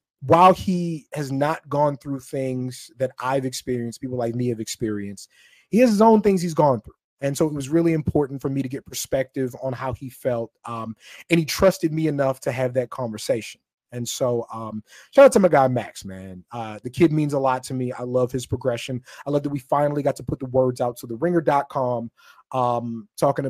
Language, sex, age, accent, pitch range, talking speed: English, male, 30-49, American, 120-150 Hz, 215 wpm